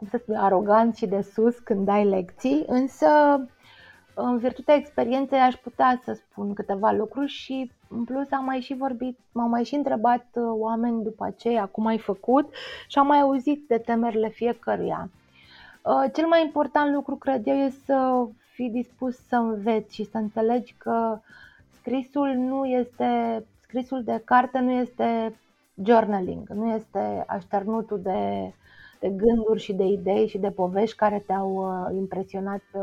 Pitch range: 210-255 Hz